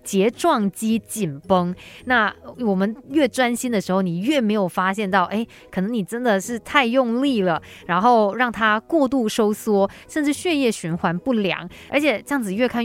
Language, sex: Chinese, female